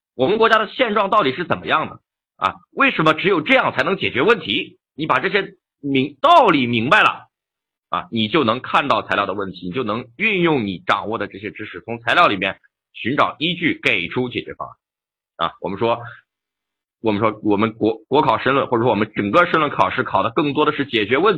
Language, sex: Chinese, male